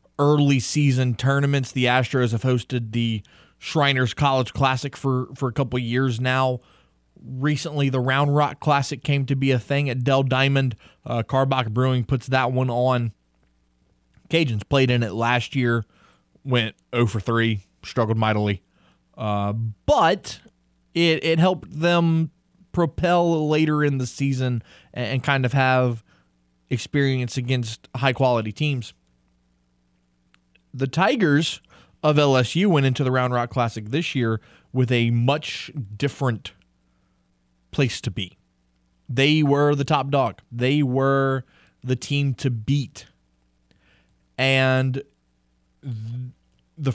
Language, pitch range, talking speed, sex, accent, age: English, 110-140 Hz, 130 wpm, male, American, 20-39